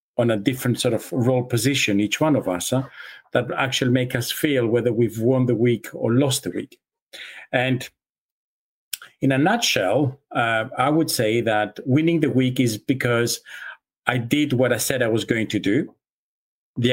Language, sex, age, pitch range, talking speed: English, male, 50-69, 120-140 Hz, 175 wpm